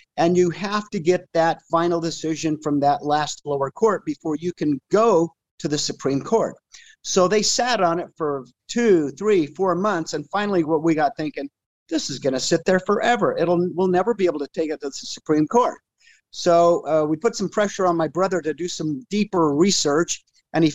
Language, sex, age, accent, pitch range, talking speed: English, male, 50-69, American, 155-195 Hz, 200 wpm